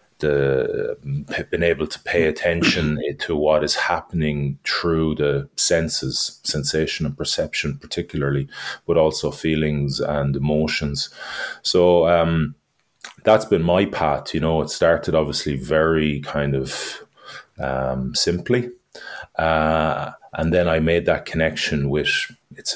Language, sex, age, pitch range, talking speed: English, male, 30-49, 75-85 Hz, 125 wpm